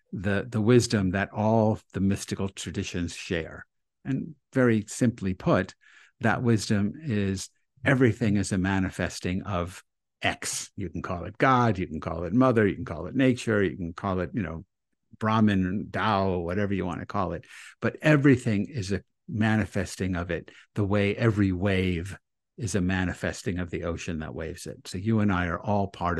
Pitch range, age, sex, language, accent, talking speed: 90-115 Hz, 60-79, male, English, American, 180 wpm